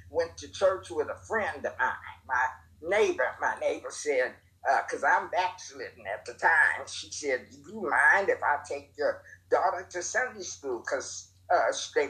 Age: 50-69